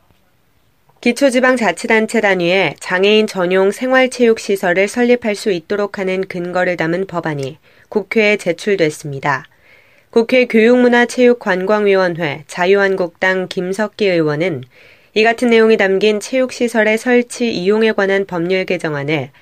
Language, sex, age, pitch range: Korean, female, 20-39, 175-220 Hz